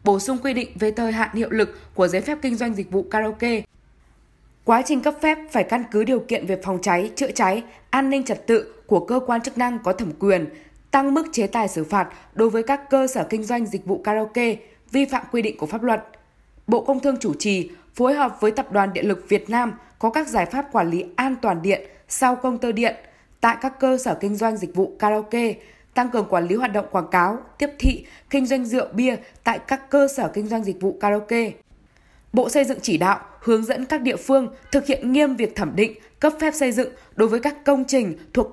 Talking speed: 235 wpm